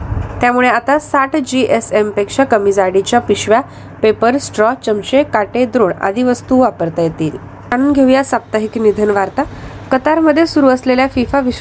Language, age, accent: Marathi, 30-49, native